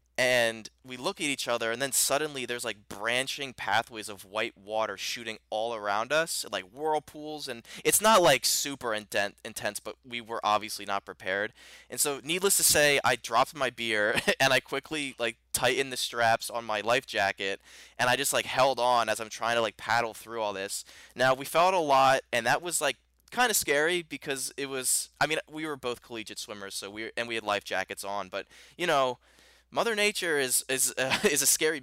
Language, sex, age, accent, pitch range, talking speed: English, male, 20-39, American, 110-140 Hz, 205 wpm